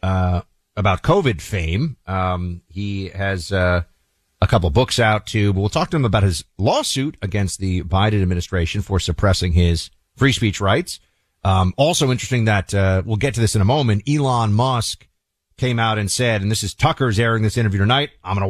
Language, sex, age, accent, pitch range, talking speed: English, male, 30-49, American, 90-115 Hz, 190 wpm